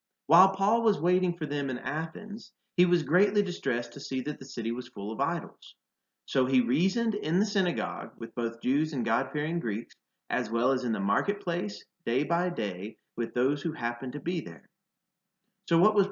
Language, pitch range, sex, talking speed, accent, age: English, 120-180 Hz, male, 195 wpm, American, 30-49